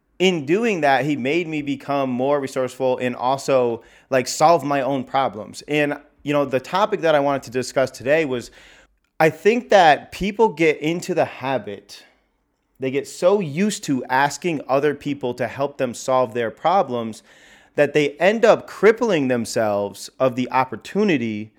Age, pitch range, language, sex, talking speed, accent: 30-49, 130-165 Hz, English, male, 165 wpm, American